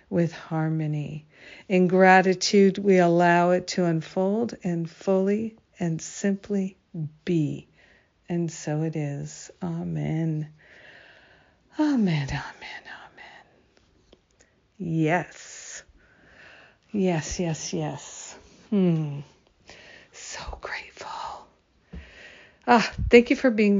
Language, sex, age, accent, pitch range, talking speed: English, female, 50-69, American, 170-200 Hz, 85 wpm